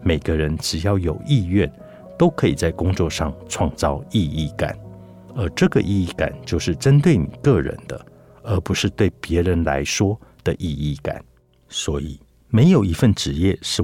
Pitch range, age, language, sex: 80-100 Hz, 60-79, Chinese, male